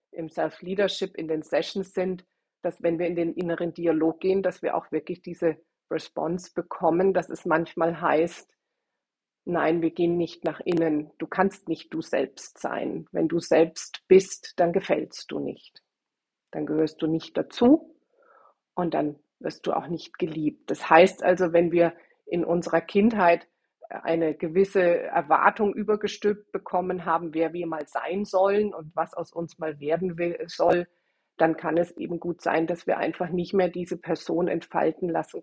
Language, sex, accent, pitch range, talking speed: German, female, German, 165-185 Hz, 165 wpm